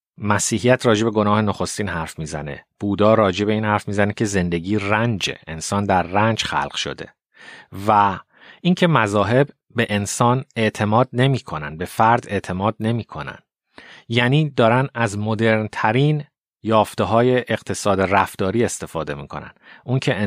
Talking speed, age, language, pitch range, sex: 125 wpm, 30-49, Persian, 95-120 Hz, male